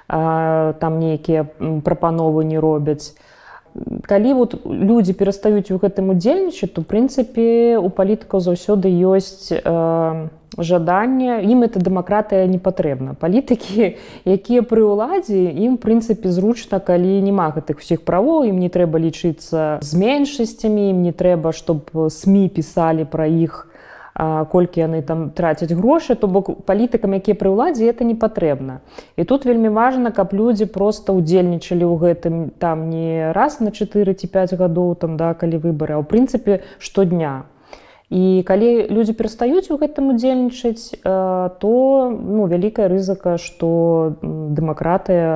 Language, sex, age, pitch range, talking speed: Russian, female, 20-39, 160-215 Hz, 135 wpm